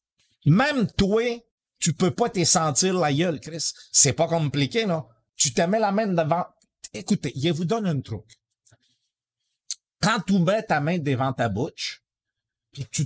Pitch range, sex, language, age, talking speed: 125-185 Hz, male, French, 50-69, 165 wpm